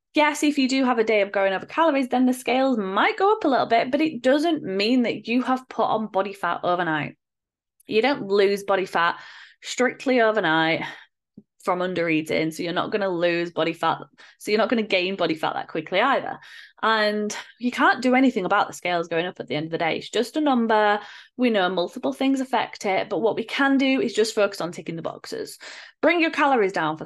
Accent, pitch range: British, 195-270 Hz